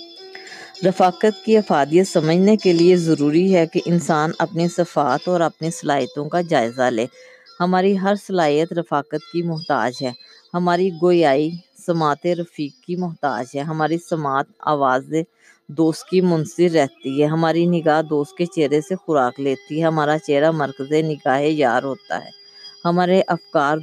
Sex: female